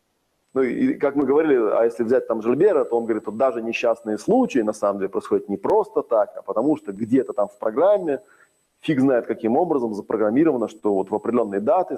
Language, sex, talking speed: Russian, male, 205 wpm